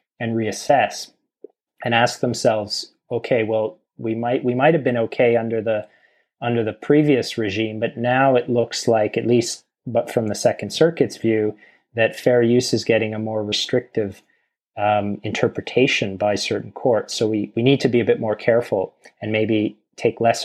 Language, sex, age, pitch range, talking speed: English, male, 30-49, 110-125 Hz, 175 wpm